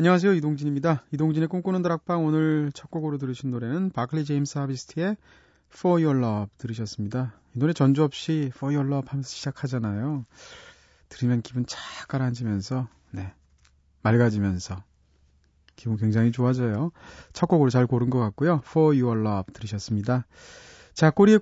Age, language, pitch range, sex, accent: 30-49, Korean, 110-160 Hz, male, native